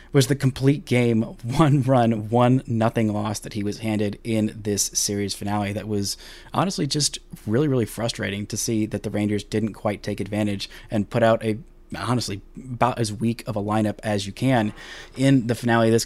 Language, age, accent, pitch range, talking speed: English, 20-39, American, 105-125 Hz, 195 wpm